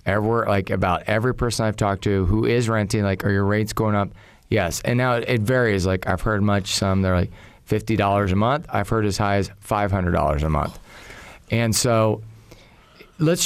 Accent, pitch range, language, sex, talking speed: American, 100-120 Hz, English, male, 195 wpm